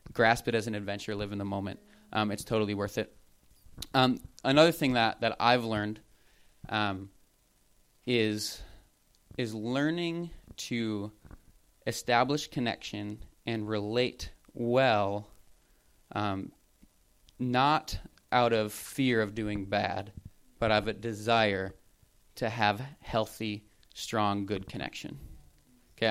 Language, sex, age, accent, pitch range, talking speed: English, male, 20-39, American, 105-130 Hz, 115 wpm